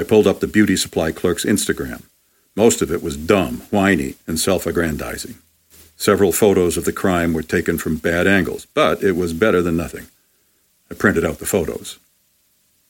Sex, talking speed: male, 170 wpm